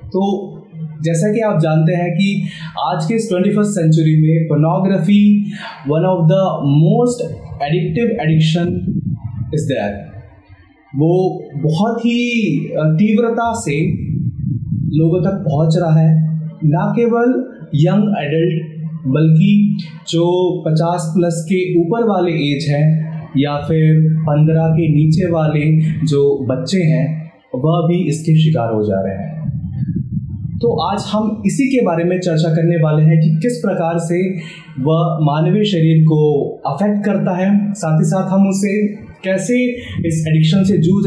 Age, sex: 30-49, male